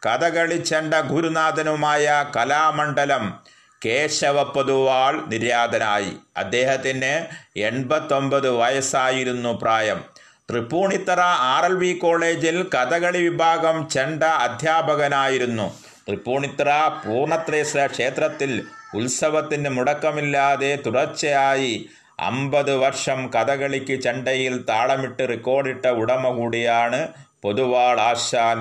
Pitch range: 120-150 Hz